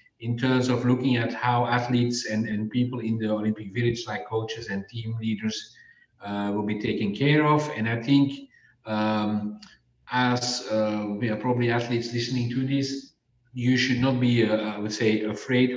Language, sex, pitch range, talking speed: English, male, 105-130 Hz, 180 wpm